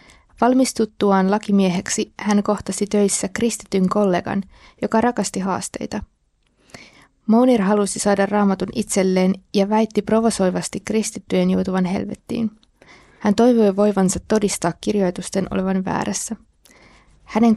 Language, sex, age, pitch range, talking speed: Finnish, female, 20-39, 190-215 Hz, 100 wpm